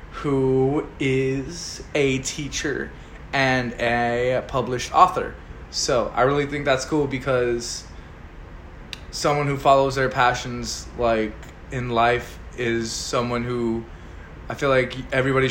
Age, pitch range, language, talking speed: 20-39, 115-130 Hz, English, 115 wpm